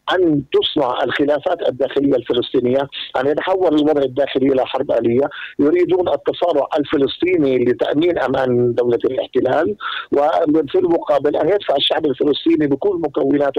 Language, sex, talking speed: Arabic, male, 120 wpm